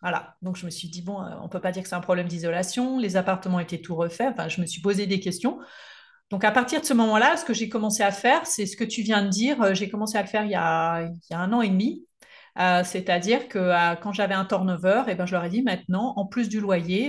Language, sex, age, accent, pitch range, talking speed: French, female, 40-59, French, 180-220 Hz, 290 wpm